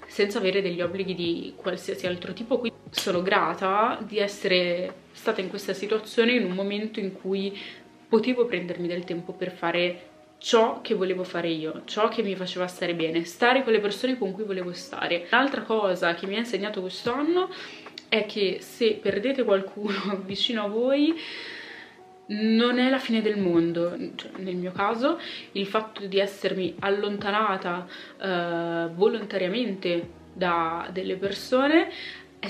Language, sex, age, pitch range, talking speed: Italian, female, 20-39, 185-230 Hz, 155 wpm